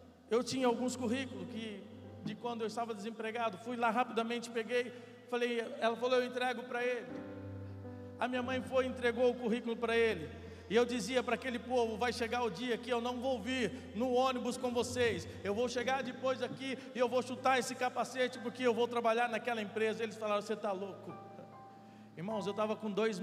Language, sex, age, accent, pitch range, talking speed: Portuguese, male, 50-69, Brazilian, 225-245 Hz, 200 wpm